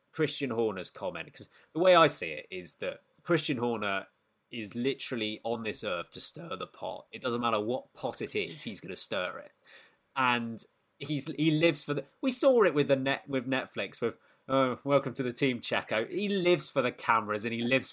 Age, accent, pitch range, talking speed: 20-39, British, 115-170 Hz, 210 wpm